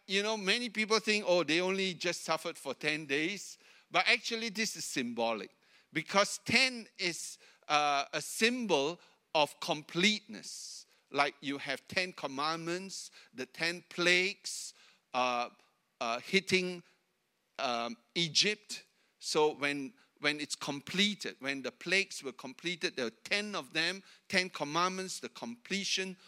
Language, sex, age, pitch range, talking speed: English, male, 60-79, 160-205 Hz, 130 wpm